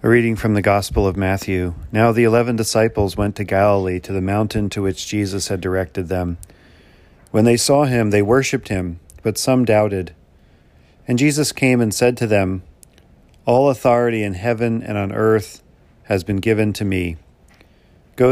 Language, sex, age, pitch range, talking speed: English, male, 40-59, 90-110 Hz, 175 wpm